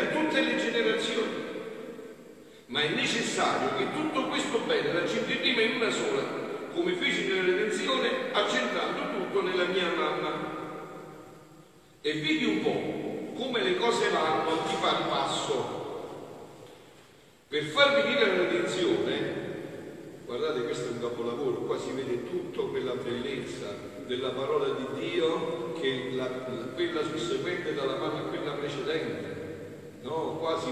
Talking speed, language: 135 wpm, Italian